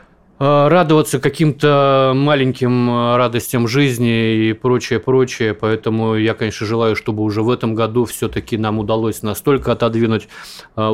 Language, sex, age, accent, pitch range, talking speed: Russian, male, 30-49, native, 105-120 Hz, 115 wpm